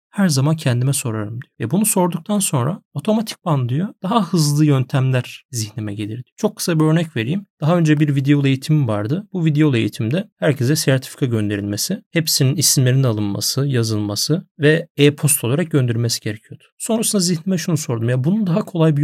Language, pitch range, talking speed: Turkish, 120-155 Hz, 160 wpm